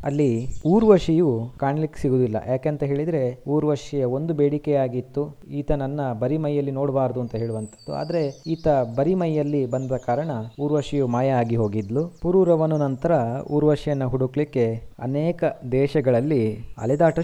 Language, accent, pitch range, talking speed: Kannada, native, 120-150 Hz, 120 wpm